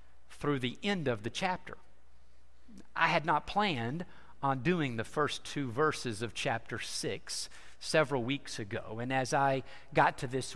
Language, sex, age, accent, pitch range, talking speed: English, male, 50-69, American, 140-215 Hz, 160 wpm